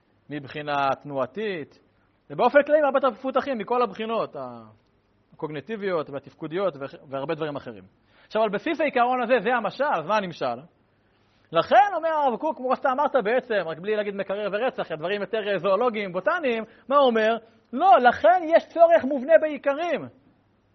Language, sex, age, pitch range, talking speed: Hebrew, male, 40-59, 155-235 Hz, 145 wpm